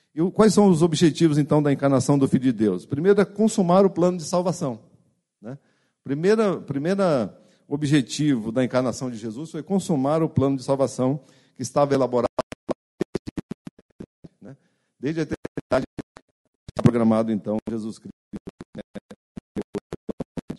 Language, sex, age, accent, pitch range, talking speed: Portuguese, male, 50-69, Brazilian, 115-155 Hz, 130 wpm